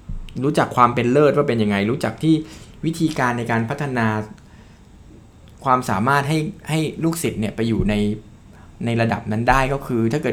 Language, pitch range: Thai, 110-155 Hz